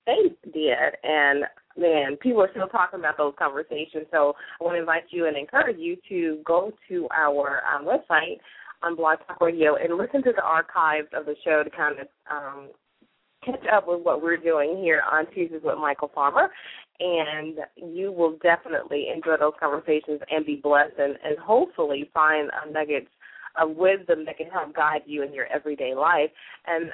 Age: 30-49